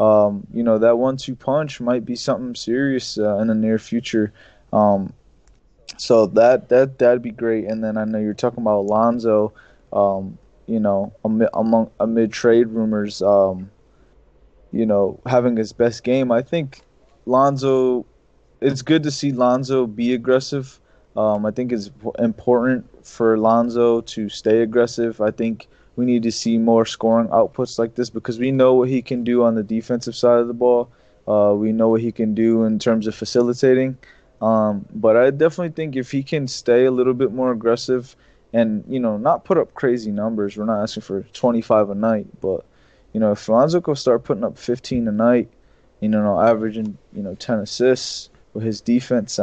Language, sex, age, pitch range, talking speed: English, male, 20-39, 110-125 Hz, 185 wpm